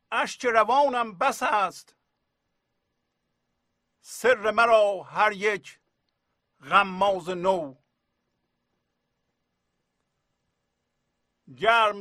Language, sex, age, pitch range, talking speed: English, male, 50-69, 140-220 Hz, 60 wpm